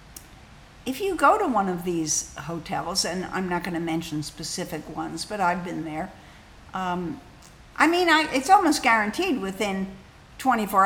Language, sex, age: English, female, 60-79